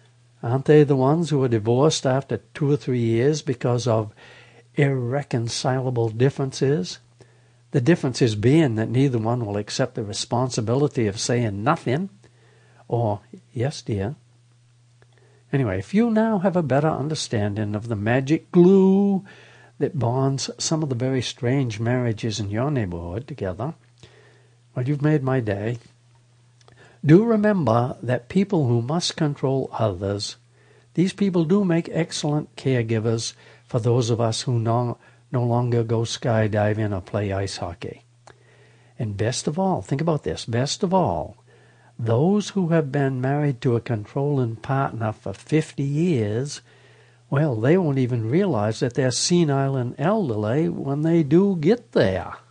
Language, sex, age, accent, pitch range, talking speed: English, male, 60-79, American, 115-150 Hz, 145 wpm